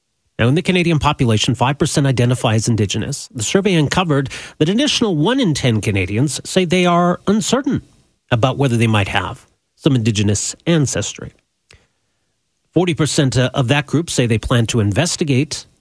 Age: 40-59